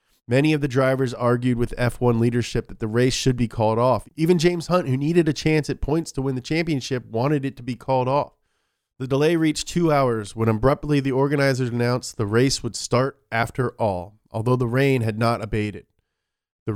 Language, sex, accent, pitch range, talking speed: English, male, American, 110-135 Hz, 205 wpm